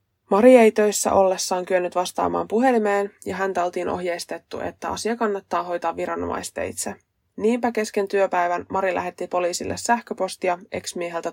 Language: Finnish